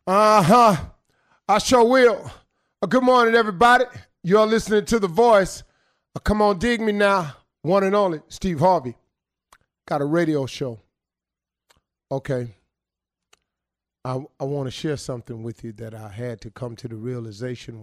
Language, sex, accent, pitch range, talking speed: English, male, American, 105-150 Hz, 155 wpm